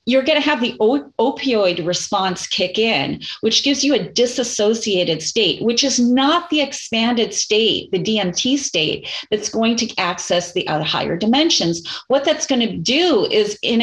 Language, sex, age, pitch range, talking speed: English, female, 40-59, 205-275 Hz, 165 wpm